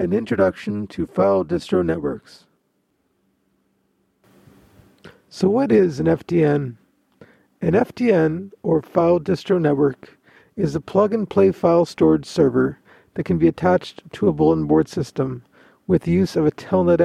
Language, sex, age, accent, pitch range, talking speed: English, male, 50-69, American, 150-175 Hz, 135 wpm